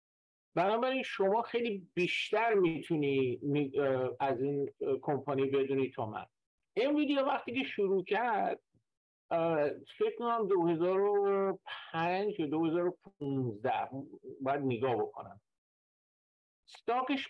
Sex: male